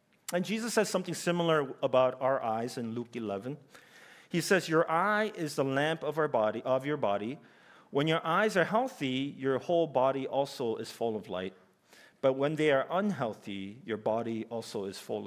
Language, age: English, 40-59